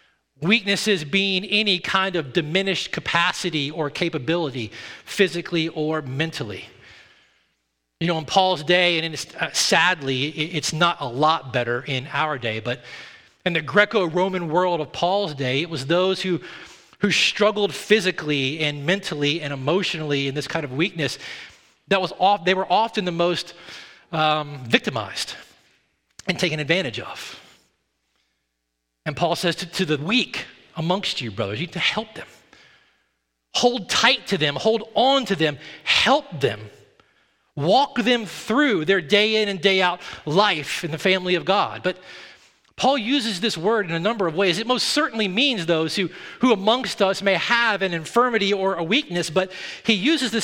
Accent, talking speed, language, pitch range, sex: American, 165 wpm, English, 155-215 Hz, male